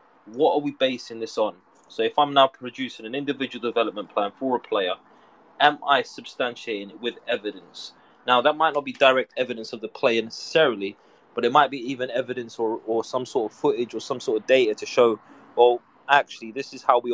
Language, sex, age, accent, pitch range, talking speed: English, male, 20-39, British, 115-135 Hz, 210 wpm